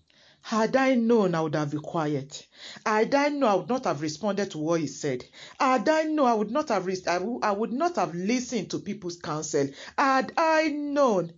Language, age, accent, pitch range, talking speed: English, 40-59, Nigerian, 155-245 Hz, 205 wpm